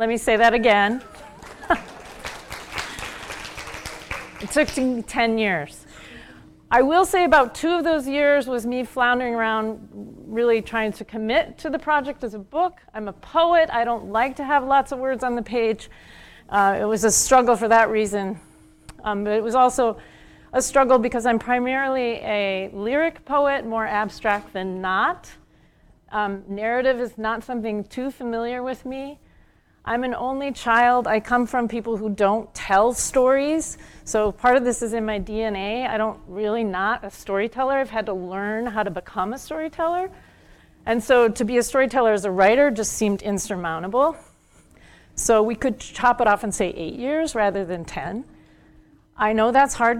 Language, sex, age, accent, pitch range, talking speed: English, female, 40-59, American, 210-260 Hz, 175 wpm